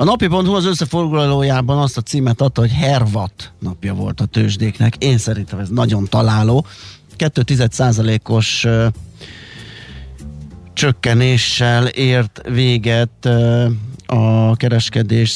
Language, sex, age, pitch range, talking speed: Hungarian, male, 30-49, 105-120 Hz, 100 wpm